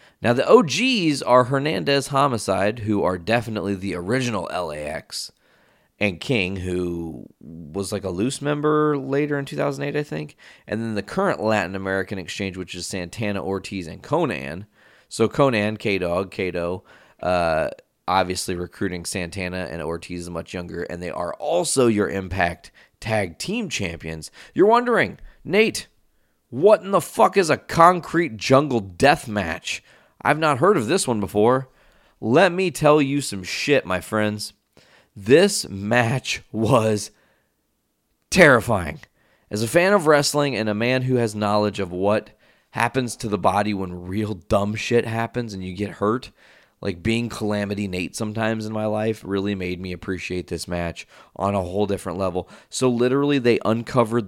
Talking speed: 155 wpm